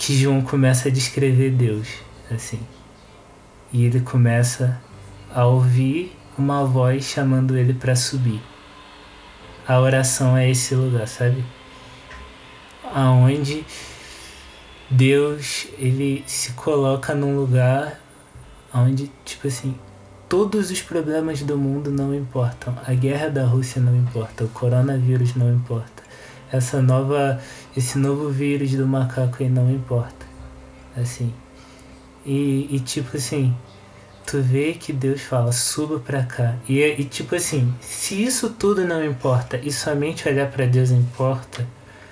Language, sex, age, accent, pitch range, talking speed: Portuguese, male, 20-39, Brazilian, 120-140 Hz, 125 wpm